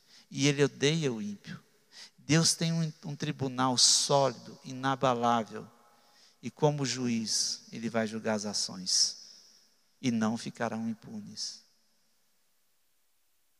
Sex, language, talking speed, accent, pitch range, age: male, Portuguese, 105 wpm, Brazilian, 125-175 Hz, 60-79